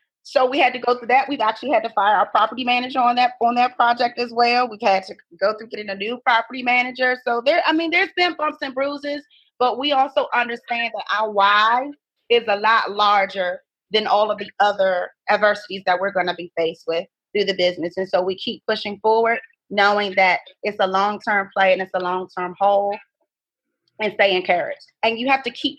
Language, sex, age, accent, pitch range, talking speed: English, female, 30-49, American, 195-250 Hz, 215 wpm